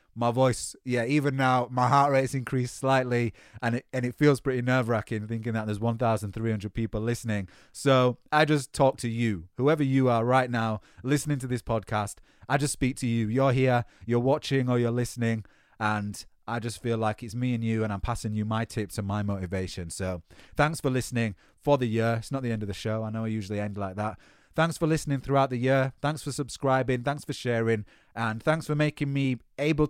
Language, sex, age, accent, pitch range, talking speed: English, male, 30-49, British, 115-135 Hz, 215 wpm